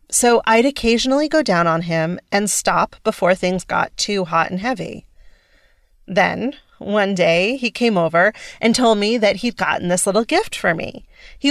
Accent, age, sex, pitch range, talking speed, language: American, 30-49, female, 185-260 Hz, 175 wpm, English